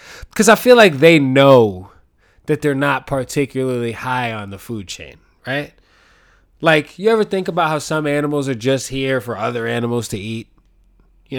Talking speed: 175 wpm